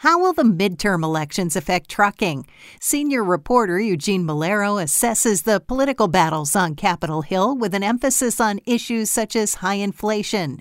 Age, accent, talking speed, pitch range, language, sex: 50-69, American, 155 wpm, 175-225 Hz, English, female